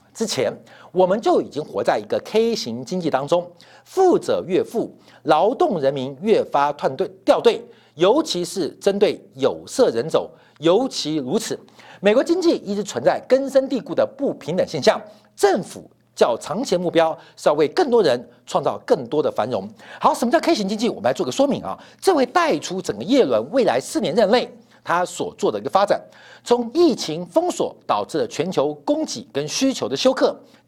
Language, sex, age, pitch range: Chinese, male, 50-69, 175-290 Hz